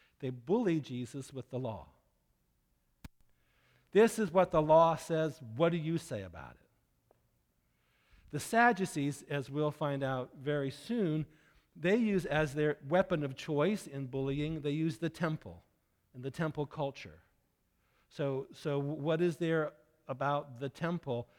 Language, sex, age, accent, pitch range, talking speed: English, male, 50-69, American, 125-155 Hz, 145 wpm